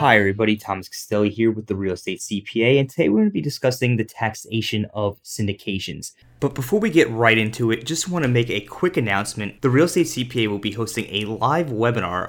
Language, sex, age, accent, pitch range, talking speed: English, male, 20-39, American, 105-130 Hz, 220 wpm